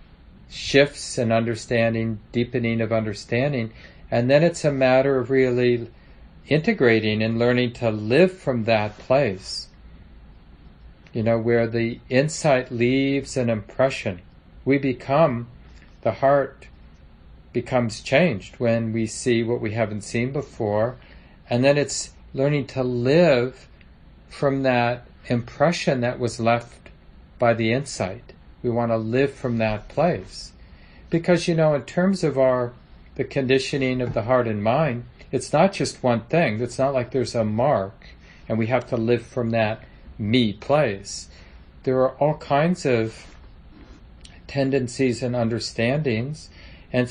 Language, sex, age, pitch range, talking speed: English, male, 40-59, 110-130 Hz, 140 wpm